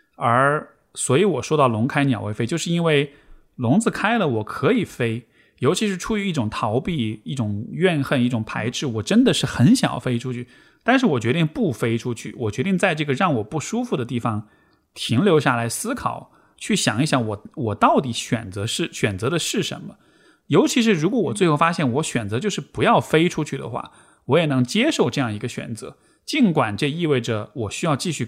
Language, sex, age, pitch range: Chinese, male, 20-39, 120-165 Hz